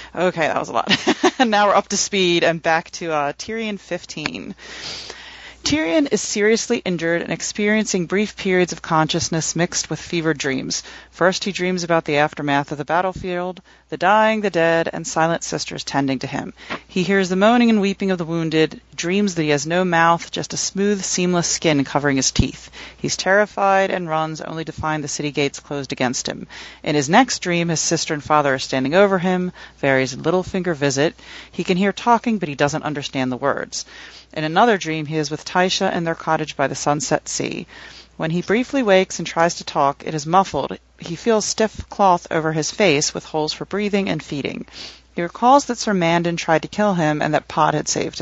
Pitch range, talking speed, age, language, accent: 150-195 Hz, 205 wpm, 30-49, English, American